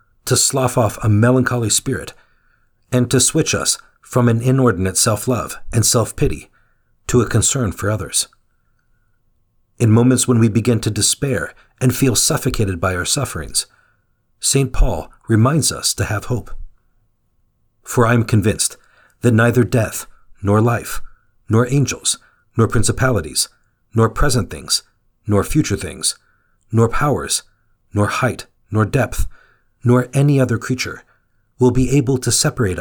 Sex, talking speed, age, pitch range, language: male, 135 wpm, 50-69, 105-125 Hz, English